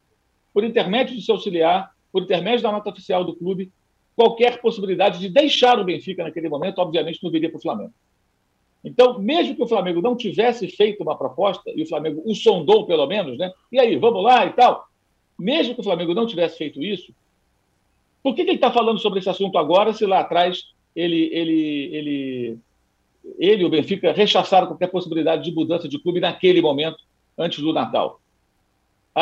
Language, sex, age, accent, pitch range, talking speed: Portuguese, male, 50-69, Brazilian, 175-240 Hz, 190 wpm